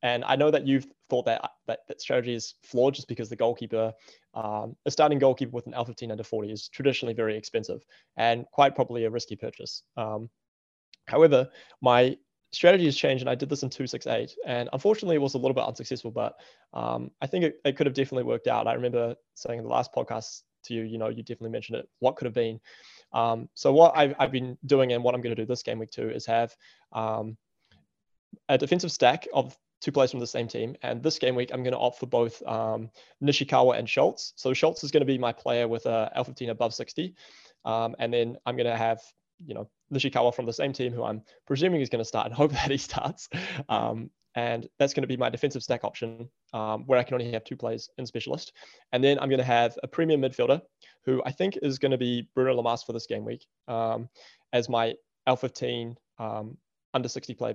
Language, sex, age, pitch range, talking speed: English, male, 20-39, 115-135 Hz, 225 wpm